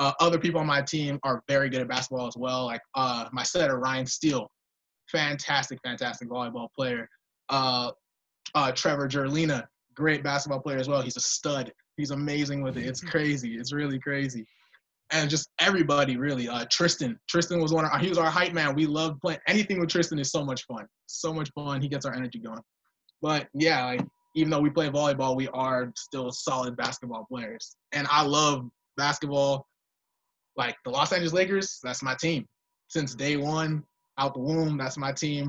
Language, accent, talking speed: English, American, 190 wpm